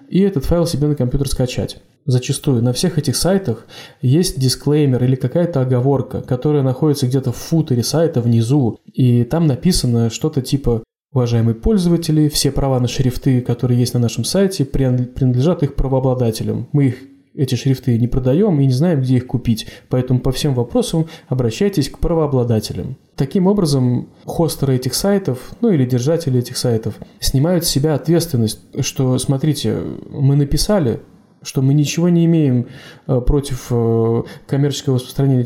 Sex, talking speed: male, 150 wpm